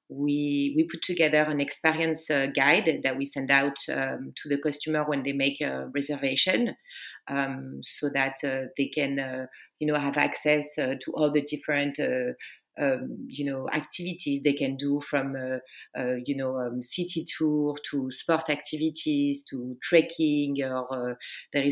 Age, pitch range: 30-49, 135-155 Hz